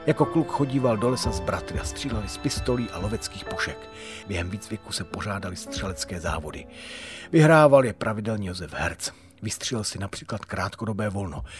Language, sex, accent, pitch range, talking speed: Czech, male, native, 90-120 Hz, 160 wpm